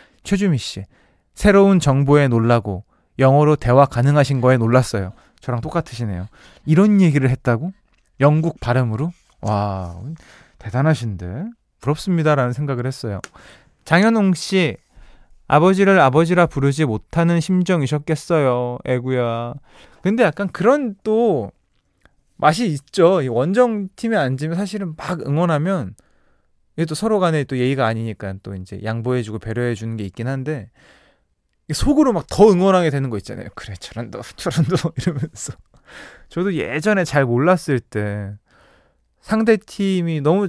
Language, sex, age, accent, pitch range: Korean, male, 20-39, native, 115-175 Hz